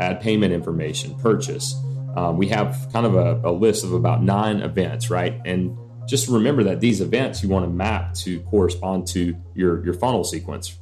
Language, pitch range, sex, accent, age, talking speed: English, 90-110 Hz, male, American, 30-49, 190 wpm